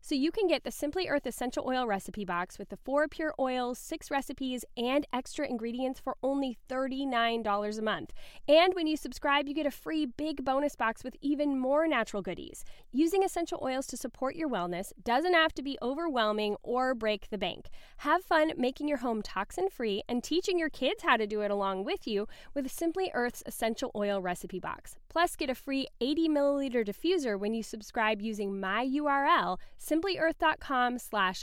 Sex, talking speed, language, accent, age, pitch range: female, 185 wpm, English, American, 10-29, 205-290 Hz